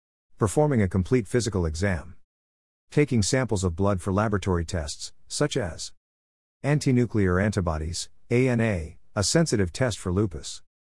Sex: male